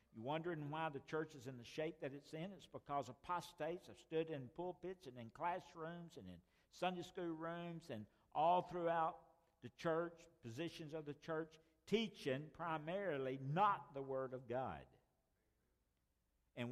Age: 60-79